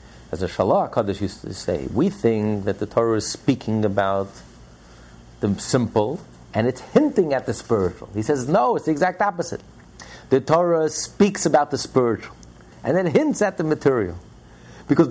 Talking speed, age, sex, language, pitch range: 170 wpm, 50-69, male, English, 105-180 Hz